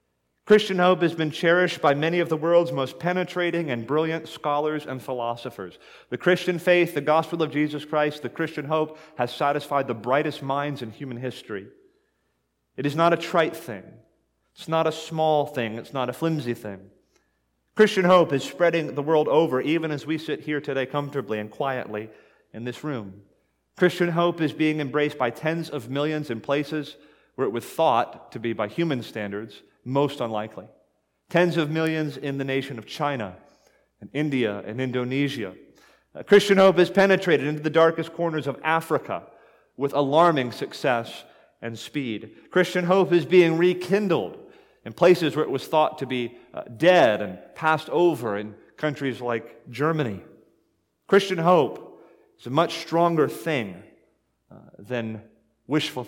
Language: English